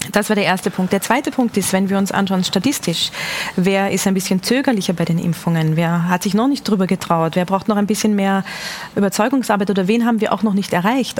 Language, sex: German, female